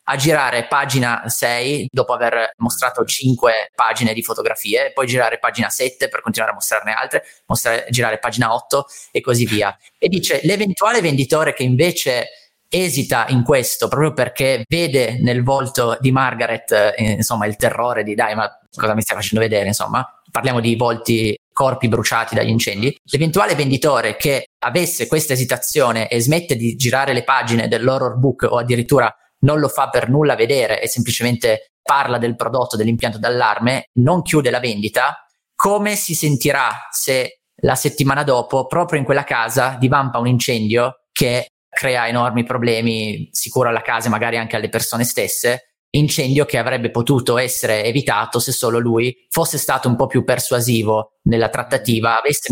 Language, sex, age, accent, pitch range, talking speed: Italian, male, 30-49, native, 115-140 Hz, 160 wpm